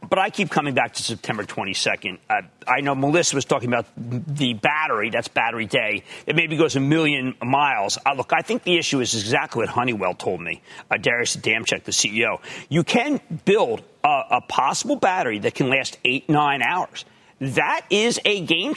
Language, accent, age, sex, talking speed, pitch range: English, American, 40-59, male, 190 wpm, 135-185 Hz